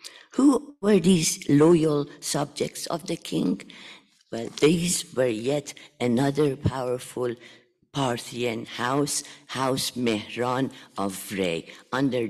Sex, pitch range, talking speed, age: female, 115-155 Hz, 100 wpm, 50-69